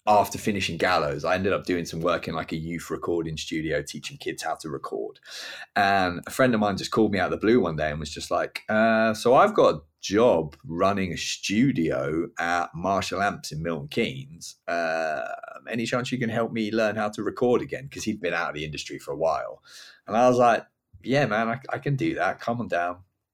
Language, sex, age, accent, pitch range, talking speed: English, male, 30-49, British, 85-115 Hz, 230 wpm